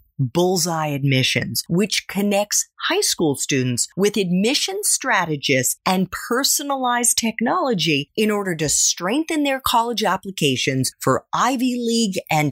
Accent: American